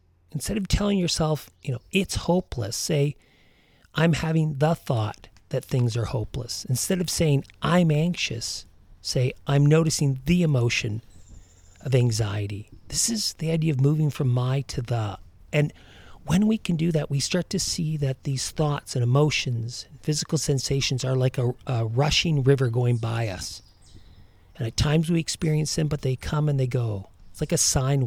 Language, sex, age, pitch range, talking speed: English, male, 40-59, 105-150 Hz, 175 wpm